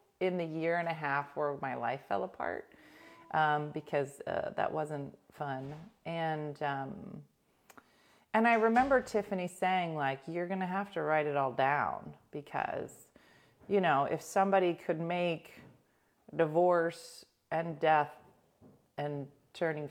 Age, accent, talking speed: 30-49, American, 140 wpm